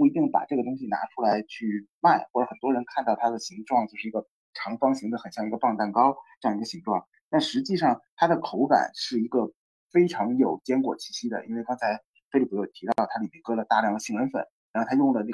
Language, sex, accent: Chinese, male, native